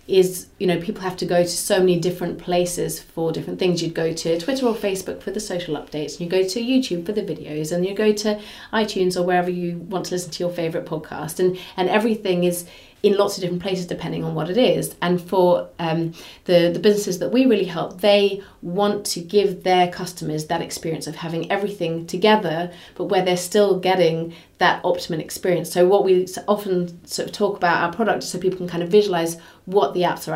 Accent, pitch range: British, 165-190 Hz